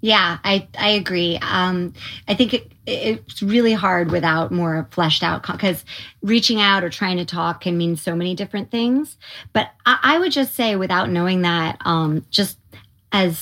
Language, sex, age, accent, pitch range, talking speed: English, female, 20-39, American, 165-205 Hz, 180 wpm